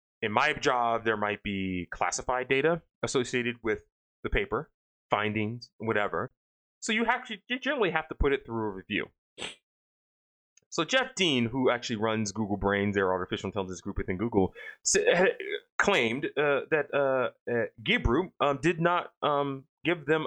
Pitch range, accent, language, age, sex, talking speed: 105-145 Hz, American, English, 30-49, male, 155 wpm